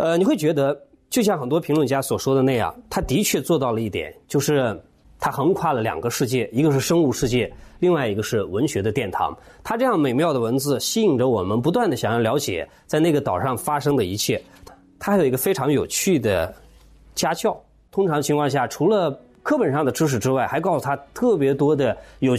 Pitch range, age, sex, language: 130-170 Hz, 20-39, male, Chinese